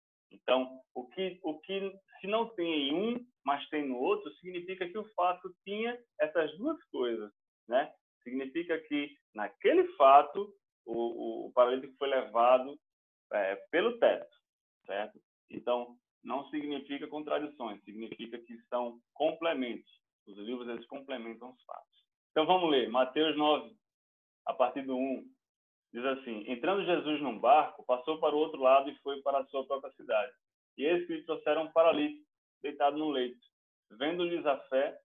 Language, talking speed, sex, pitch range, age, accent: Portuguese, 155 wpm, male, 125-170 Hz, 20-39, Brazilian